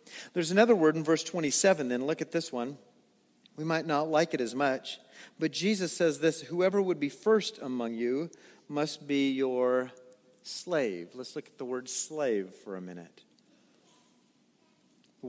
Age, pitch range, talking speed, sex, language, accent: 40-59, 135-190 Hz, 165 wpm, male, English, American